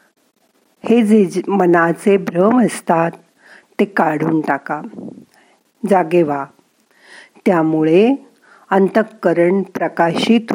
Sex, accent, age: female, native, 50-69